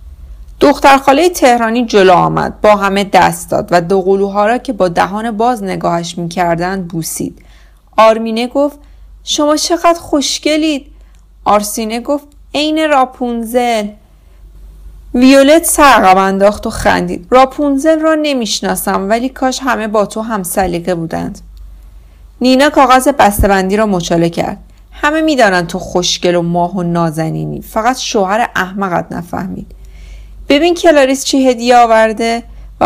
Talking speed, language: 135 wpm, Persian